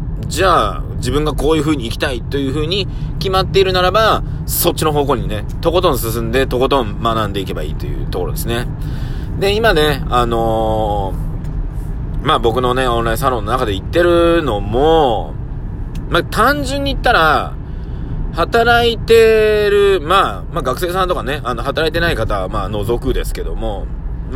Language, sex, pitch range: Japanese, male, 125-180 Hz